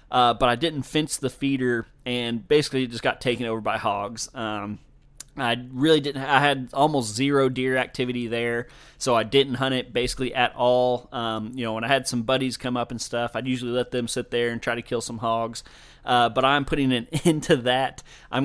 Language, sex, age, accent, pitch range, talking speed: English, male, 30-49, American, 120-140 Hz, 220 wpm